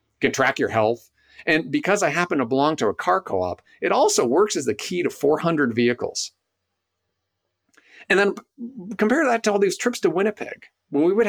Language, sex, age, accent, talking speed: English, male, 40-59, American, 190 wpm